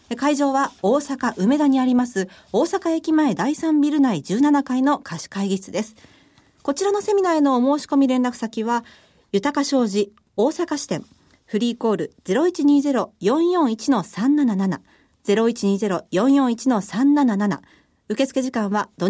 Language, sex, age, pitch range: Japanese, female, 40-59, 195-285 Hz